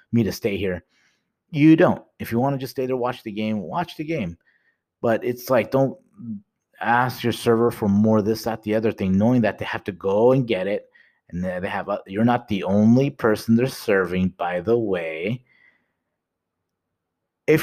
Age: 30-49